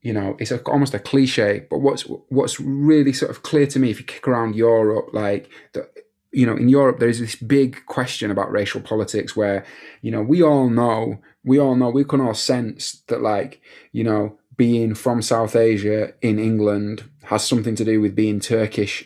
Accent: British